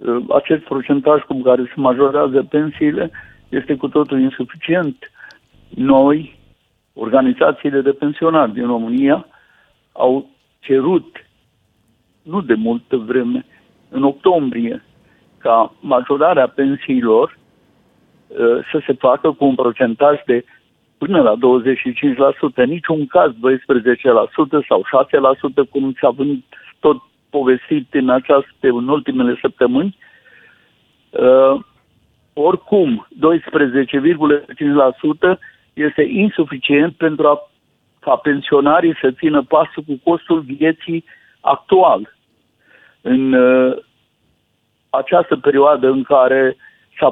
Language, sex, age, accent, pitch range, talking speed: Romanian, male, 60-79, Indian, 130-165 Hz, 95 wpm